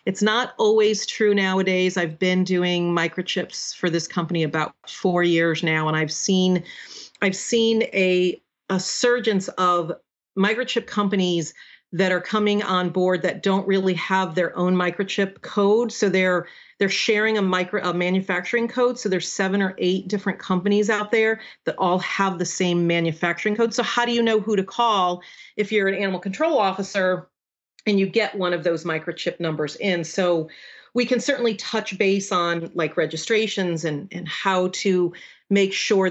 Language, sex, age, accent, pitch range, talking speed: English, female, 40-59, American, 170-200 Hz, 170 wpm